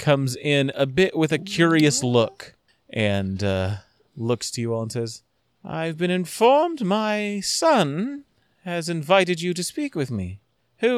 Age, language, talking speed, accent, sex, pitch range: 30-49, English, 160 wpm, American, male, 105-145 Hz